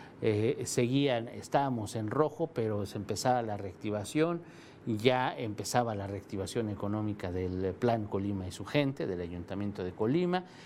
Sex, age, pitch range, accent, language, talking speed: male, 50-69, 110-145 Hz, Mexican, Spanish, 145 wpm